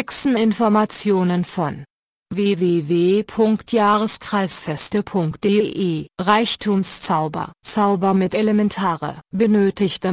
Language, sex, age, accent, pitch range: German, female, 50-69, German, 180-210 Hz